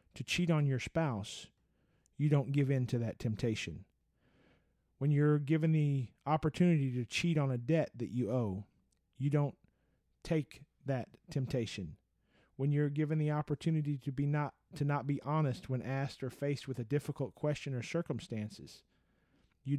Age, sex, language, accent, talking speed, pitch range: 40-59, male, English, American, 155 wpm, 120-150 Hz